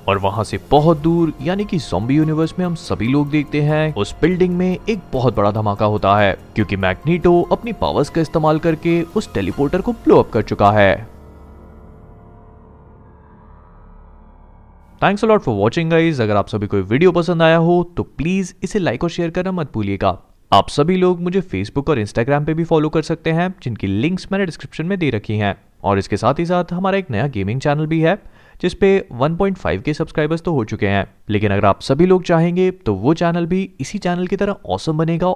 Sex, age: male, 30-49